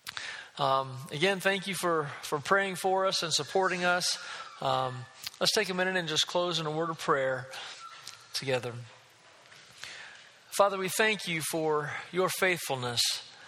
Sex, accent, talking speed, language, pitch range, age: male, American, 145 wpm, English, 140-180 Hz, 40-59